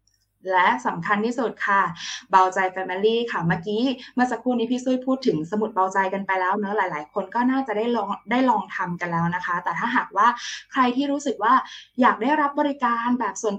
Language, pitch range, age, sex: Thai, 175-220 Hz, 20-39, female